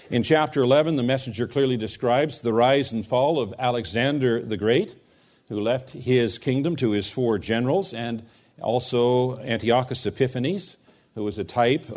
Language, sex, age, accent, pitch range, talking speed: English, male, 50-69, American, 125-170 Hz, 155 wpm